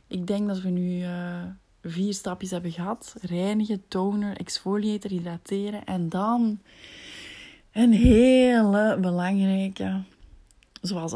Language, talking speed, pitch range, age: Dutch, 110 wpm, 175-205 Hz, 20-39